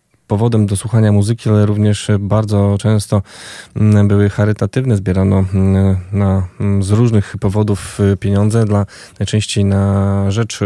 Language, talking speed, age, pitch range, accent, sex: Polish, 120 wpm, 20-39, 95-110 Hz, native, male